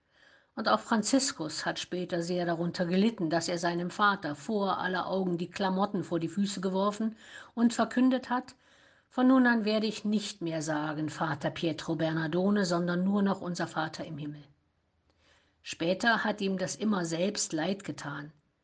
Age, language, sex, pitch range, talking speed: 50-69, German, female, 165-215 Hz, 160 wpm